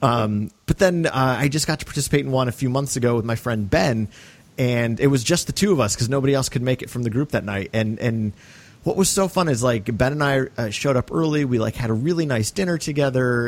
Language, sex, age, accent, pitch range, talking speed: English, male, 30-49, American, 110-145 Hz, 270 wpm